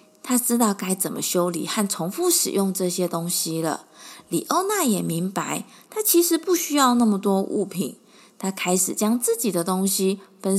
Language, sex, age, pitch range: Chinese, female, 20-39, 185-300 Hz